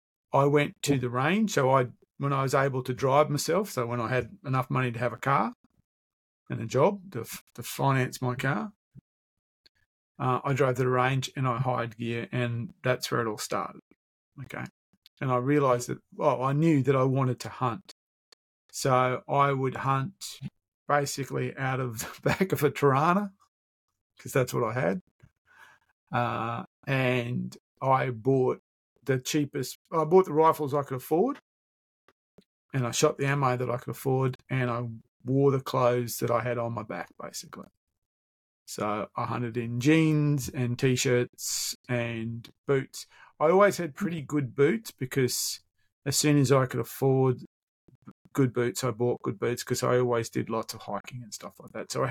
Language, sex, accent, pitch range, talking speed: English, male, Australian, 120-140 Hz, 175 wpm